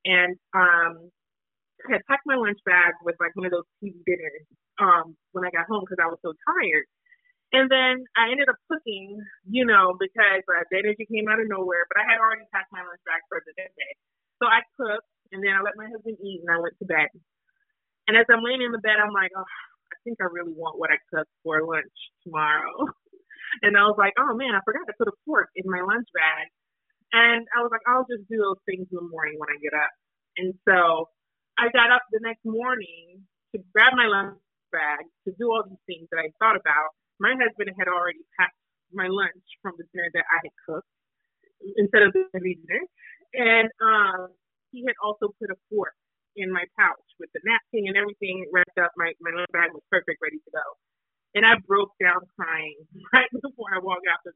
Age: 20-39